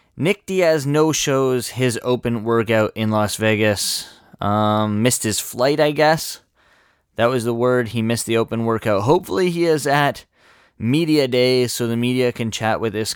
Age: 20-39